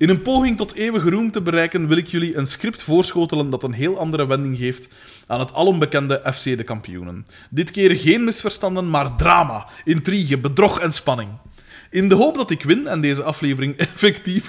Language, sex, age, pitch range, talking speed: Dutch, male, 20-39, 130-185 Hz, 190 wpm